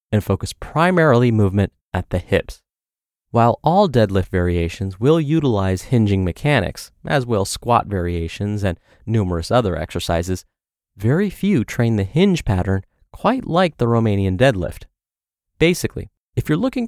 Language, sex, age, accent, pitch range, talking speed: English, male, 30-49, American, 95-130 Hz, 135 wpm